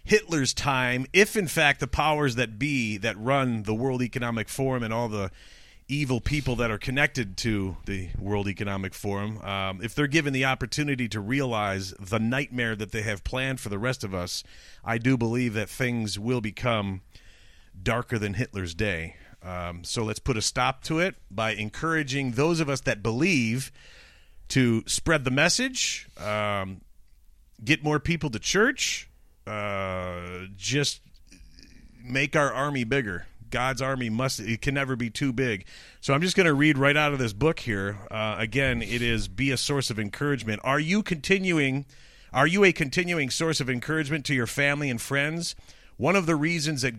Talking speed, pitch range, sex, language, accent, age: 180 wpm, 105-145 Hz, male, English, American, 40-59